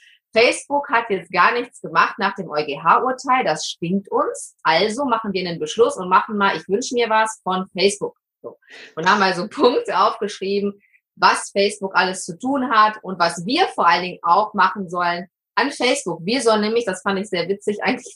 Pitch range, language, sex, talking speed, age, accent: 180-220 Hz, German, female, 190 wpm, 30-49, German